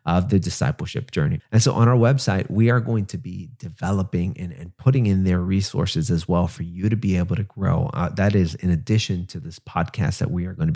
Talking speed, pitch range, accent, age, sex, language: 235 wpm, 90-125 Hz, American, 30-49, male, English